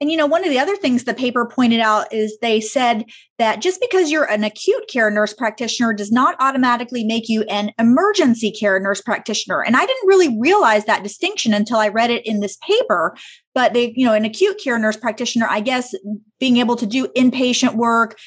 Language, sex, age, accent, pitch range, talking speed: English, female, 30-49, American, 215-265 Hz, 215 wpm